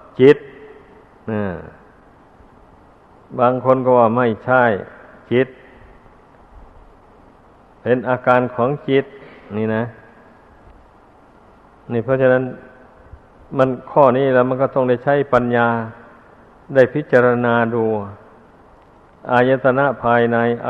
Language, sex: Thai, male